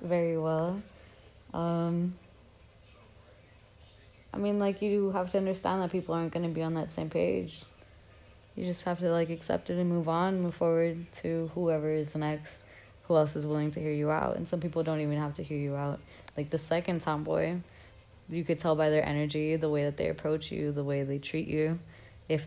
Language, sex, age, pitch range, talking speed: English, female, 20-39, 145-165 Hz, 205 wpm